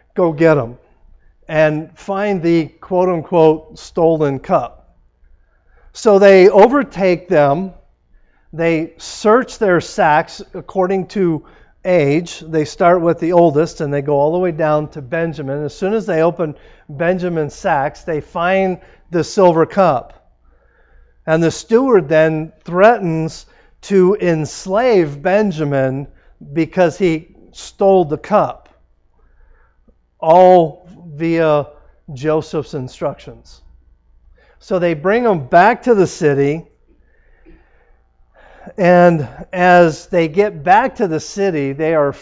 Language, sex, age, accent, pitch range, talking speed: English, male, 50-69, American, 145-185 Hz, 115 wpm